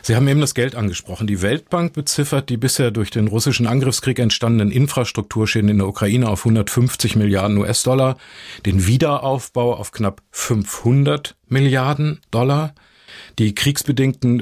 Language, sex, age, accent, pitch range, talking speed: German, male, 50-69, German, 110-135 Hz, 135 wpm